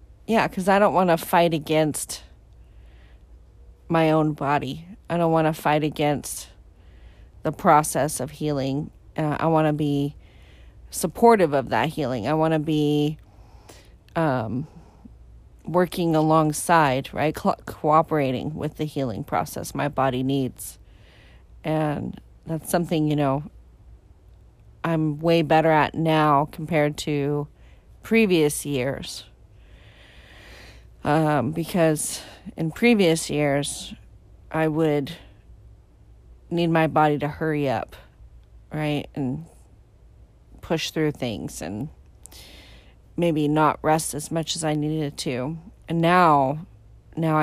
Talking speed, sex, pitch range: 115 wpm, female, 135-160 Hz